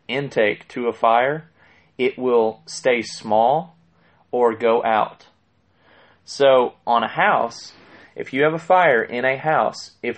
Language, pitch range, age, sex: English, 110-135 Hz, 30-49, male